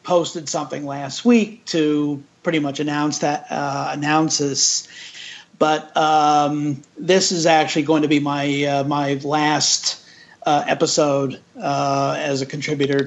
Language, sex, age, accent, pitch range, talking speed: English, male, 50-69, American, 150-180 Hz, 135 wpm